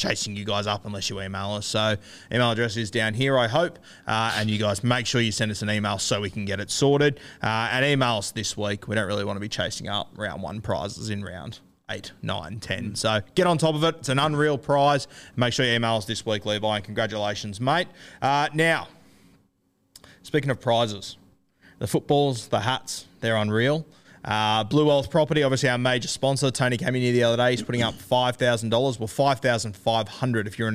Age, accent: 20-39, Australian